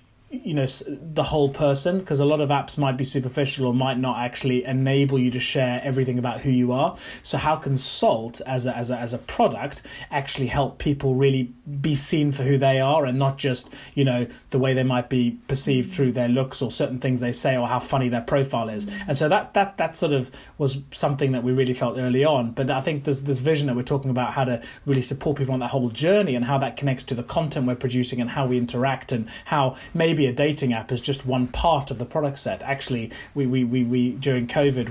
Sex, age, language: male, 30-49, English